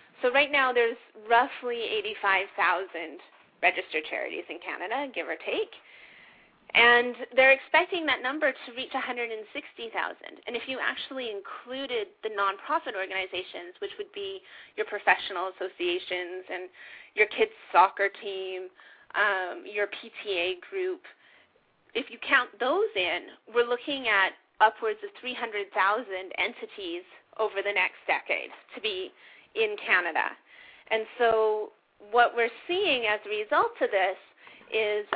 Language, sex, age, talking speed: English, female, 30-49, 130 wpm